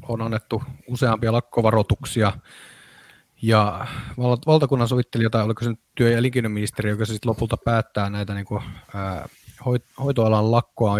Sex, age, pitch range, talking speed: male, 30-49, 105-125 Hz, 130 wpm